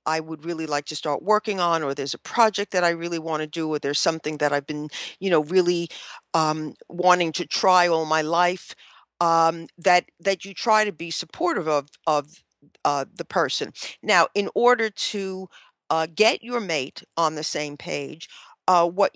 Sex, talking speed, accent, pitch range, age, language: female, 190 wpm, American, 160-190 Hz, 50-69, English